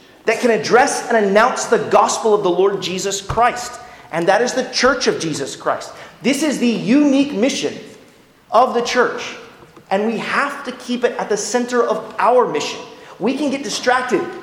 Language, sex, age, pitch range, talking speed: English, male, 30-49, 170-240 Hz, 185 wpm